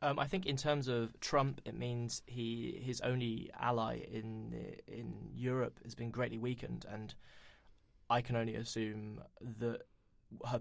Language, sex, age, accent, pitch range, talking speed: English, male, 20-39, British, 110-125 Hz, 155 wpm